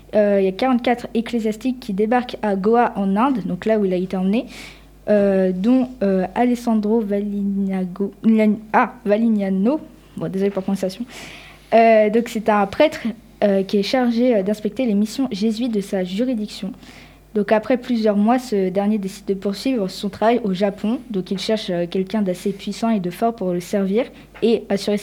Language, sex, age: French, female, 20-39